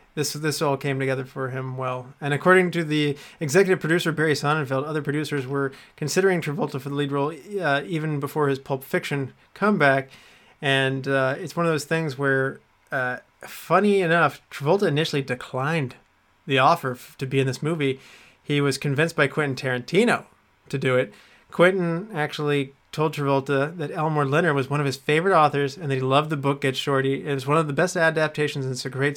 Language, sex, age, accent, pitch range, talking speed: English, male, 30-49, American, 135-165 Hz, 195 wpm